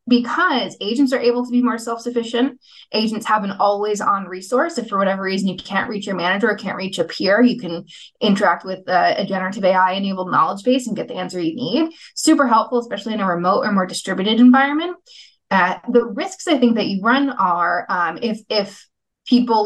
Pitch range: 190-245 Hz